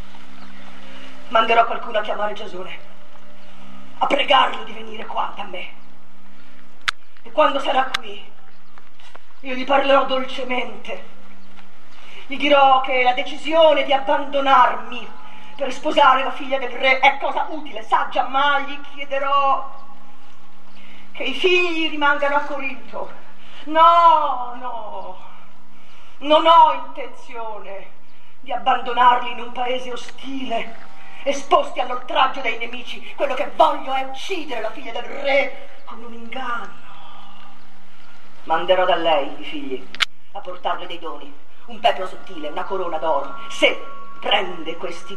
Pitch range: 200-275 Hz